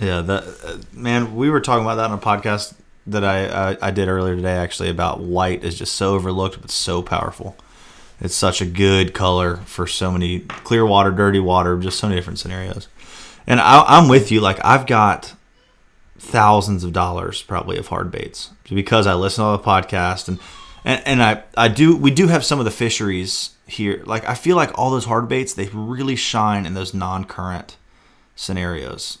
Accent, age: American, 30-49